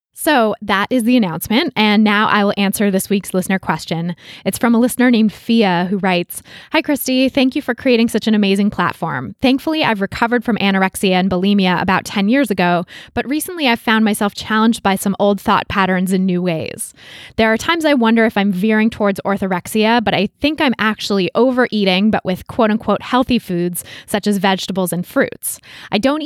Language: English